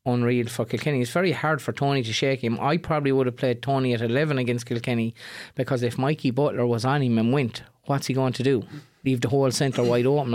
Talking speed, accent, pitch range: 240 wpm, Irish, 120-145 Hz